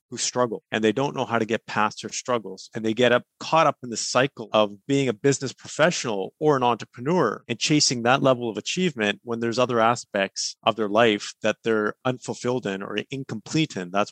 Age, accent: 30-49, American